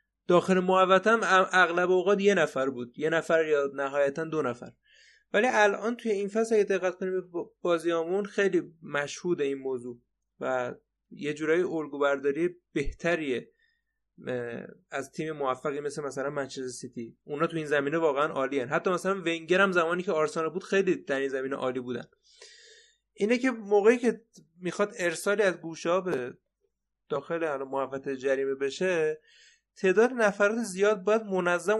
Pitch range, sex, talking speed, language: 155-200 Hz, male, 140 wpm, Persian